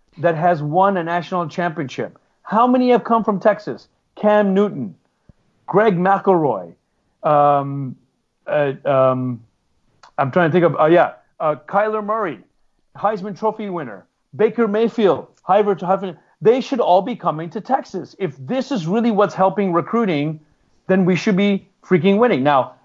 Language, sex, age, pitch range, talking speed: German, male, 40-59, 145-190 Hz, 145 wpm